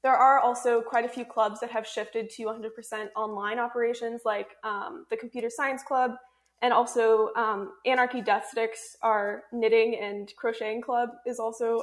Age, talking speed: 20-39, 165 wpm